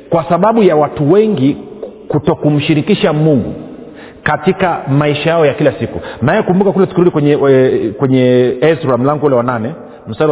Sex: male